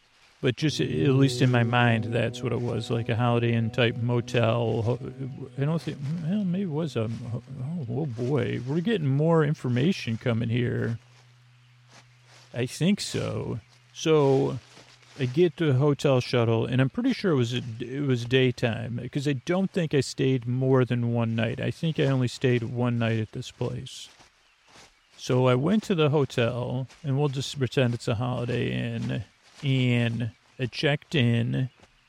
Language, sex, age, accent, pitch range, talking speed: English, male, 40-59, American, 120-135 Hz, 170 wpm